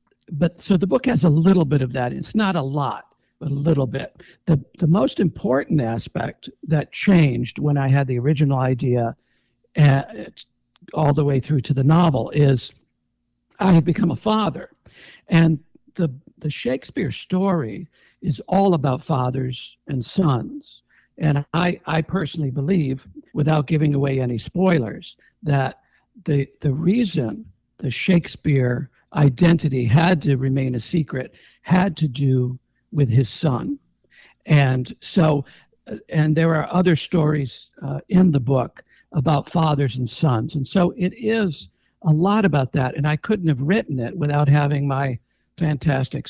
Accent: American